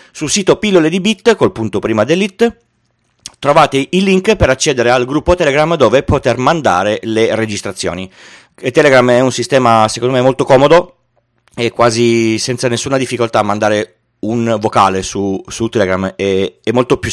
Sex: male